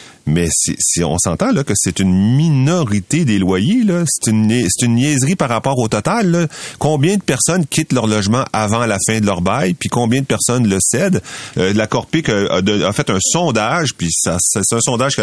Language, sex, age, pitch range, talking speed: French, male, 30-49, 90-130 Hz, 220 wpm